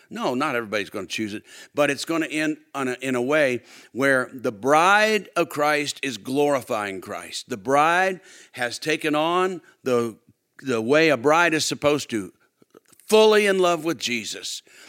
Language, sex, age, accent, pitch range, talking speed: English, male, 50-69, American, 120-160 Hz, 175 wpm